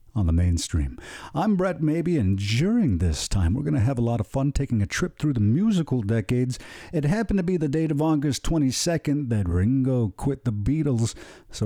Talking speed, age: 200 wpm, 50-69